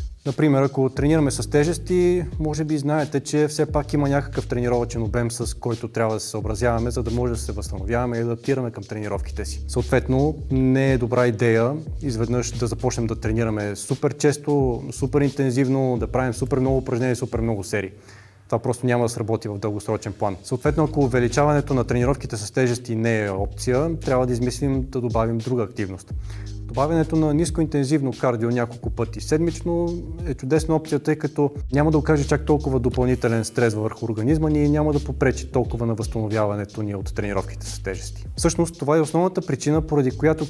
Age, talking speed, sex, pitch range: 20-39, 180 wpm, male, 110-140 Hz